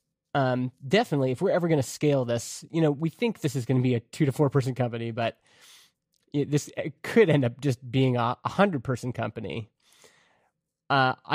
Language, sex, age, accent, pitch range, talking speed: English, male, 20-39, American, 125-150 Hz, 205 wpm